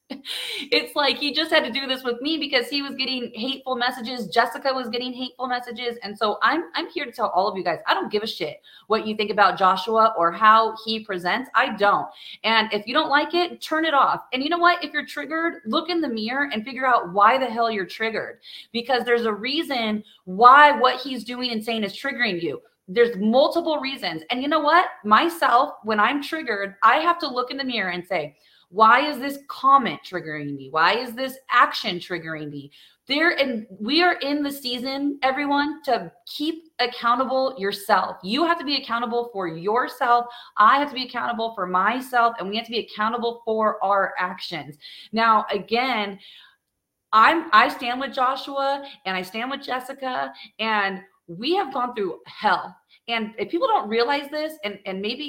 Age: 30-49